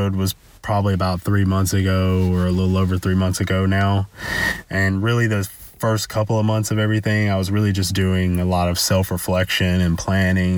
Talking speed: 195 wpm